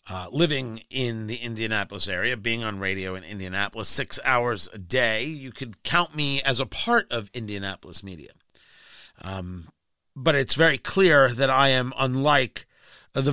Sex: male